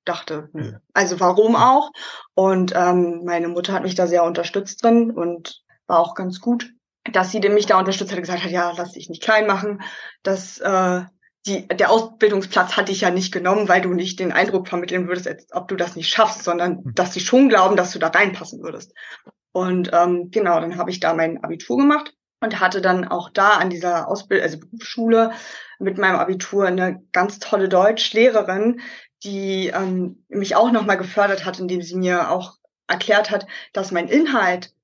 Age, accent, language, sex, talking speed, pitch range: 20-39, German, German, female, 190 wpm, 180-215 Hz